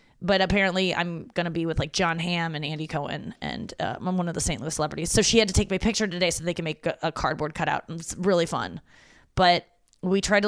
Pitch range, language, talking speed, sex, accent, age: 165-195 Hz, English, 260 wpm, female, American, 20-39